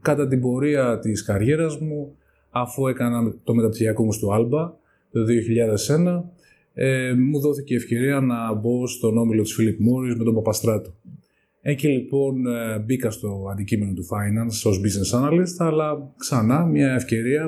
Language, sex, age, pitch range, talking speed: Greek, male, 20-39, 110-140 Hz, 160 wpm